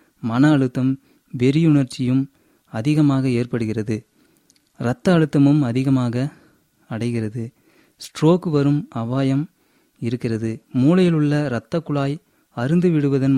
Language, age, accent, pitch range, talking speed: Tamil, 30-49, native, 125-155 Hz, 85 wpm